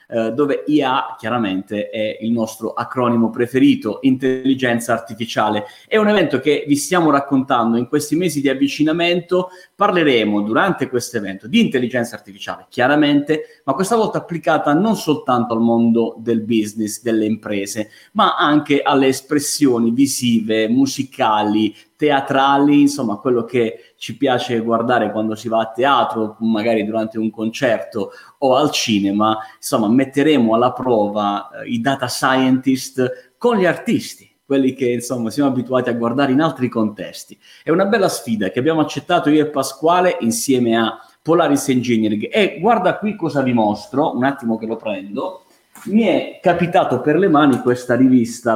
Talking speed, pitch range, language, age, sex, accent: 150 wpm, 115-150 Hz, Italian, 30-49, male, native